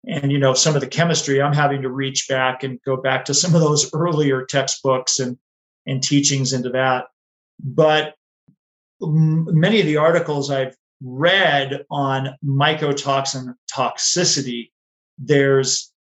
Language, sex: English, male